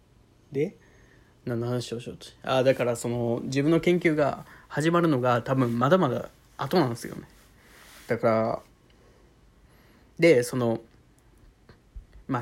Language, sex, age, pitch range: Japanese, male, 20-39, 120-150 Hz